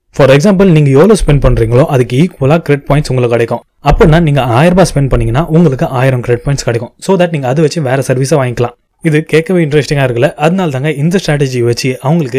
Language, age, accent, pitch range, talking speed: Tamil, 20-39, native, 125-160 Hz, 200 wpm